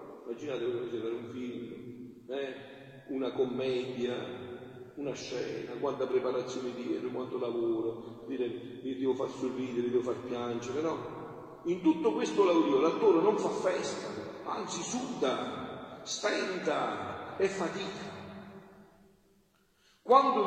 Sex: male